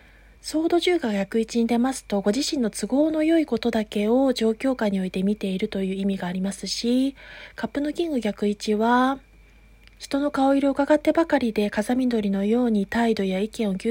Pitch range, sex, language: 200-260 Hz, female, Japanese